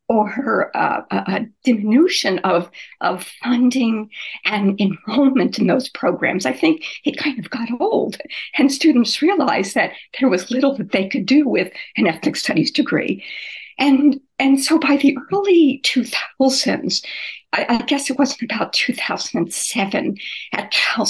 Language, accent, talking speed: English, American, 150 wpm